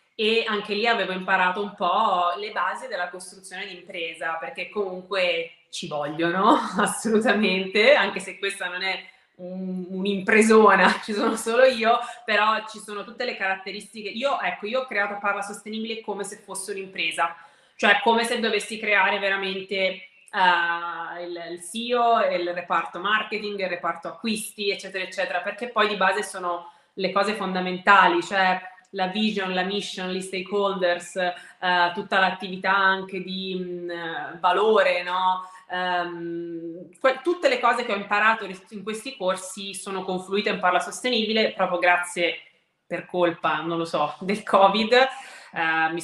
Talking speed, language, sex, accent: 140 wpm, Italian, female, native